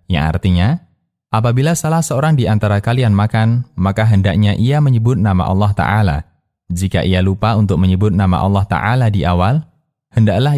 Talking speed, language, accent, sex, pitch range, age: 155 wpm, Indonesian, native, male, 95-125 Hz, 20-39